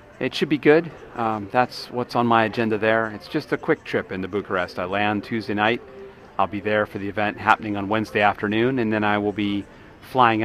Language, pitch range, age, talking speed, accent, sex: English, 100-120 Hz, 40-59, 220 wpm, American, male